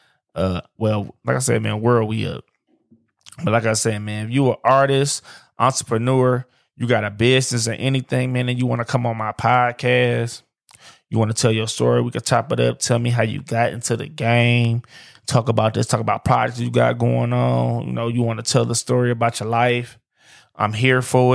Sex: male